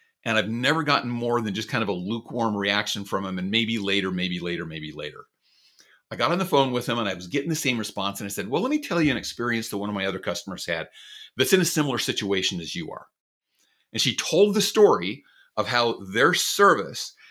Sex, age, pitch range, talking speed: male, 40-59, 105-155 Hz, 240 wpm